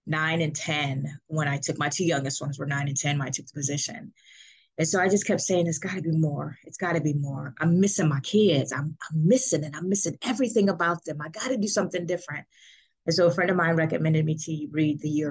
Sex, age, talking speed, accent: female, 20-39, 245 wpm, American